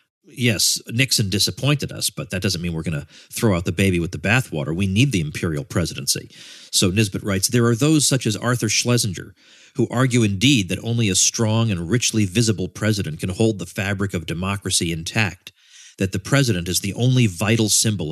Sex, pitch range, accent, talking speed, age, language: male, 90-120 Hz, American, 195 wpm, 40-59, English